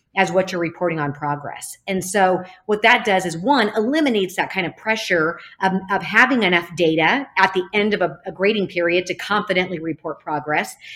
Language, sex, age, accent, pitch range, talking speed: English, female, 40-59, American, 165-200 Hz, 190 wpm